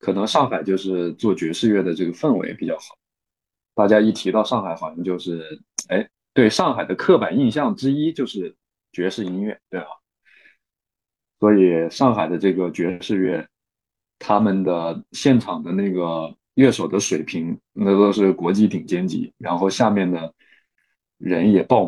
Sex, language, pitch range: male, Chinese, 90-110 Hz